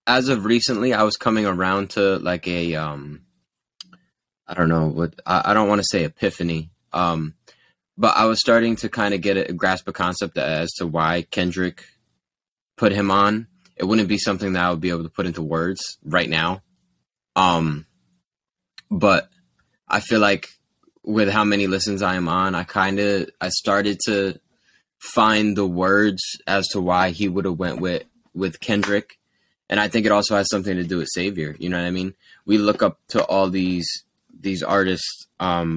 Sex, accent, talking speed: male, American, 190 wpm